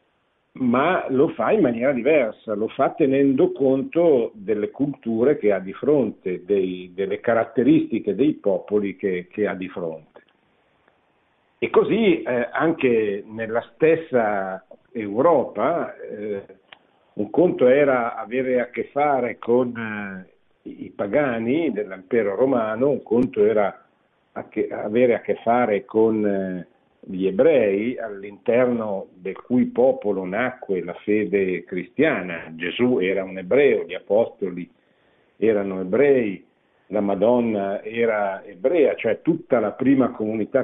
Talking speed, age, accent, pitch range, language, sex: 120 wpm, 50-69, native, 100-135 Hz, Italian, male